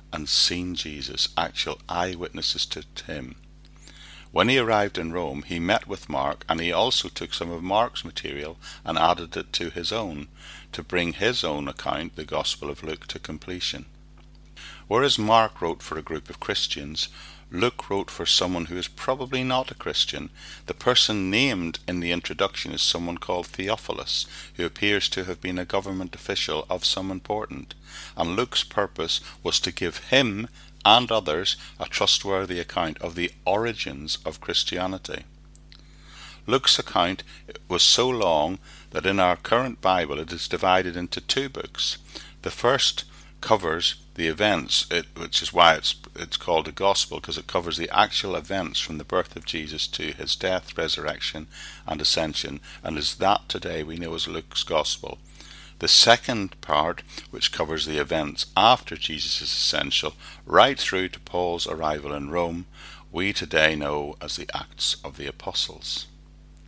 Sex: male